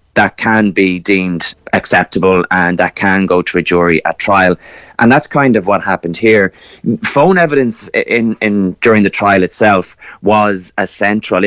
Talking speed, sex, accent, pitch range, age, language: 170 wpm, male, Irish, 90-105 Hz, 30-49, English